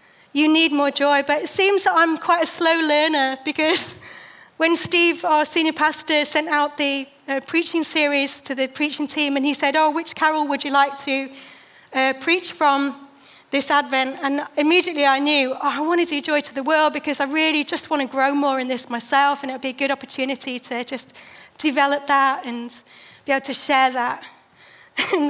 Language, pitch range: English, 265-310 Hz